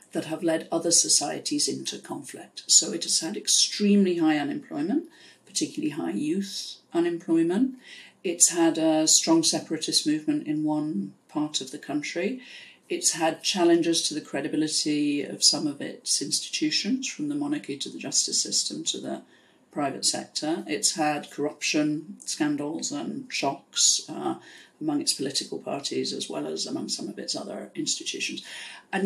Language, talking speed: English, 150 wpm